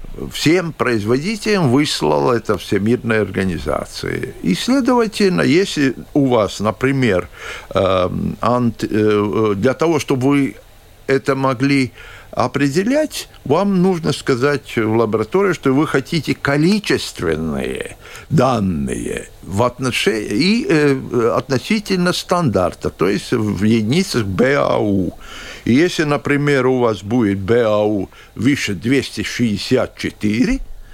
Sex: male